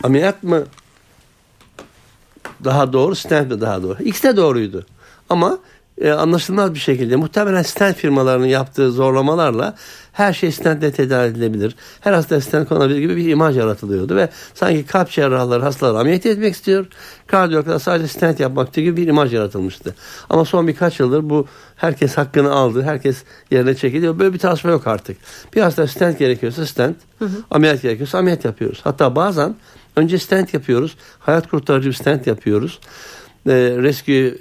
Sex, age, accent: male, 60-79, native